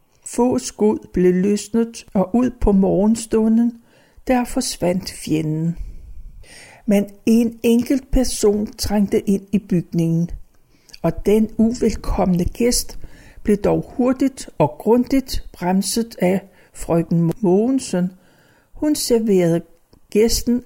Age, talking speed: 60-79, 100 wpm